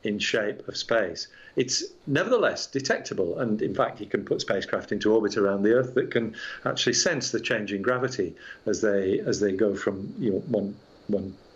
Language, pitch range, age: English, 110-150 Hz, 50-69